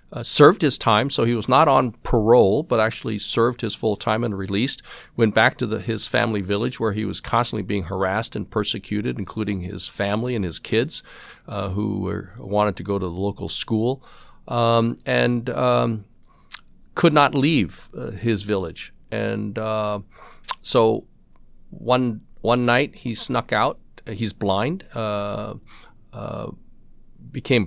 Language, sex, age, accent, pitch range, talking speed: English, male, 50-69, American, 100-115 Hz, 160 wpm